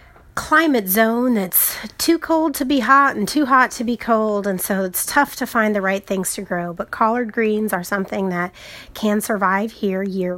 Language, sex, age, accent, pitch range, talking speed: English, female, 30-49, American, 190-240 Hz, 200 wpm